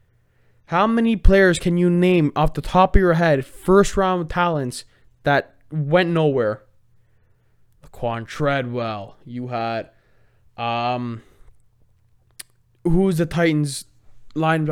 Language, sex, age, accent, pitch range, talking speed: English, male, 20-39, American, 120-185 Hz, 110 wpm